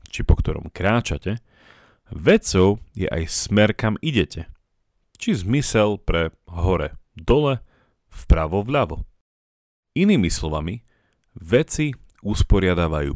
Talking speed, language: 85 wpm, Slovak